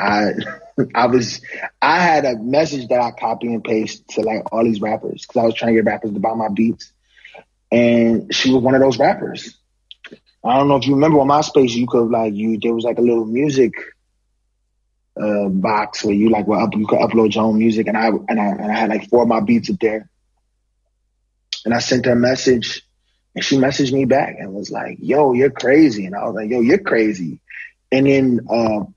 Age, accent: 20-39, American